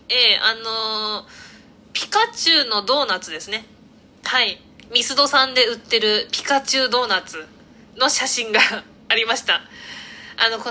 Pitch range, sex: 230-345 Hz, female